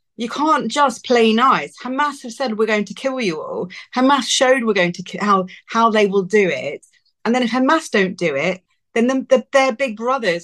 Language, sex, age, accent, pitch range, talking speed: English, female, 40-59, British, 185-250 Hz, 225 wpm